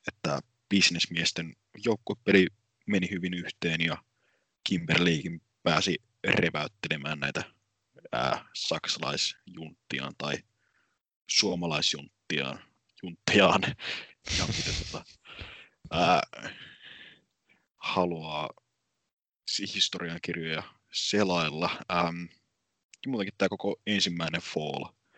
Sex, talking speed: male, 65 wpm